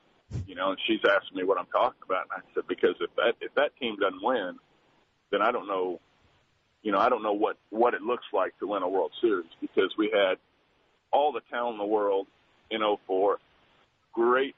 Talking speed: 215 wpm